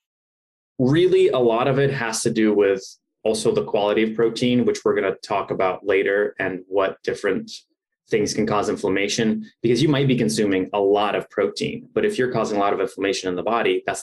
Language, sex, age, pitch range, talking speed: English, male, 20-39, 115-165 Hz, 210 wpm